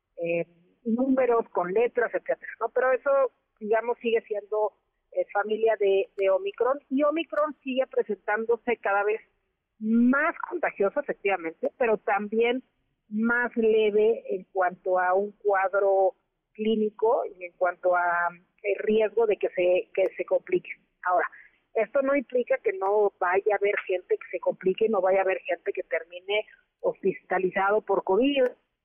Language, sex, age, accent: Spanish, female, 40-59, Mexican